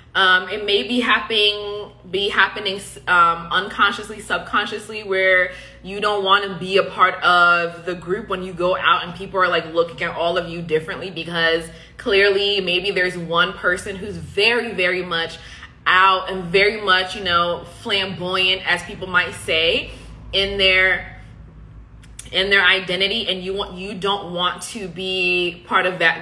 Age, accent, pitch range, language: 20-39, American, 175-200 Hz, English